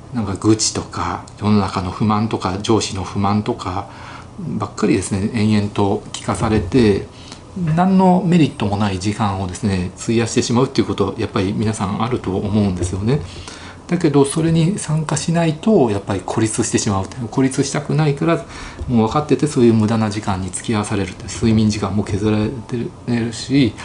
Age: 40-59